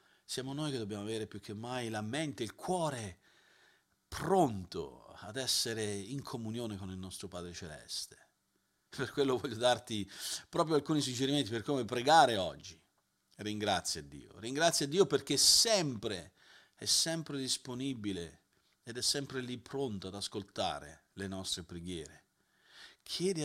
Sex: male